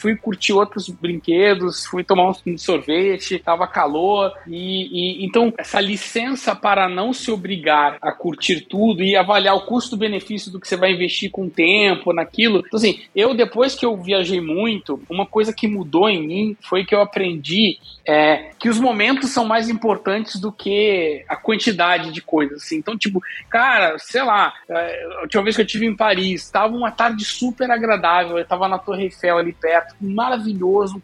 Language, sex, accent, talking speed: Portuguese, male, Brazilian, 180 wpm